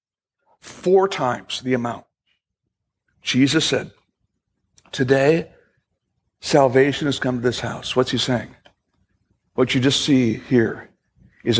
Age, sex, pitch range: 60-79, male, 105-140 Hz